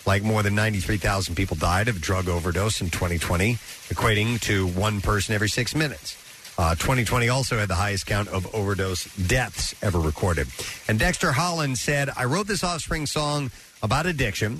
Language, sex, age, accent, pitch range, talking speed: English, male, 50-69, American, 100-130 Hz, 170 wpm